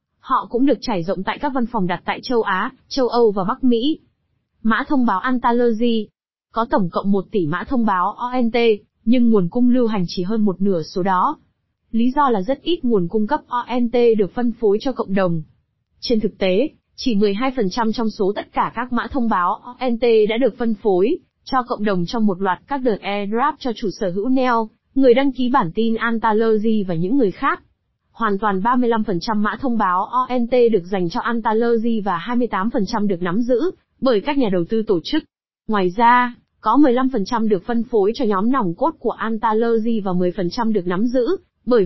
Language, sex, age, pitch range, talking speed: Vietnamese, female, 20-39, 205-245 Hz, 200 wpm